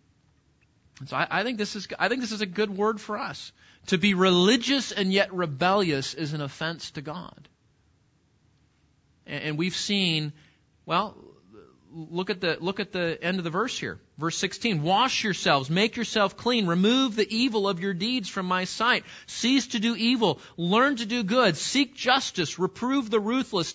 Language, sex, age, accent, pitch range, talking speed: English, male, 40-59, American, 190-250 Hz, 180 wpm